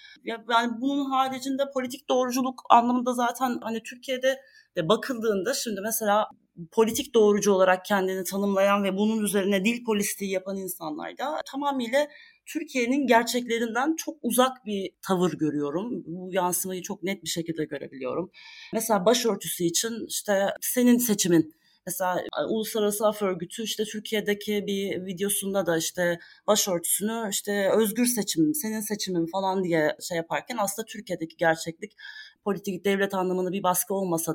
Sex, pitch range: female, 185-225 Hz